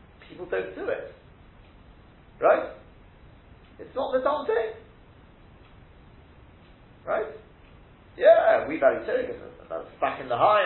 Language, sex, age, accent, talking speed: English, male, 40-59, British, 105 wpm